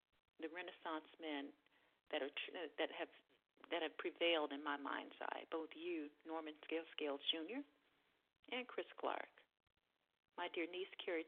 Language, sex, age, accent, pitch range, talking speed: English, female, 40-59, American, 160-220 Hz, 145 wpm